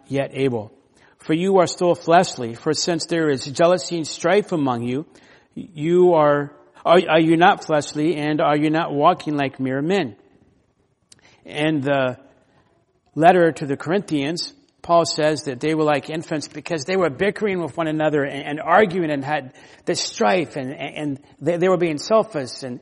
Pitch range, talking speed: 145-175 Hz, 175 wpm